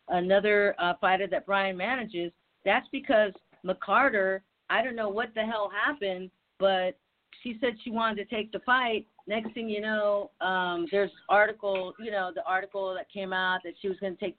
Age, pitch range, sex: 40-59, 200-250 Hz, female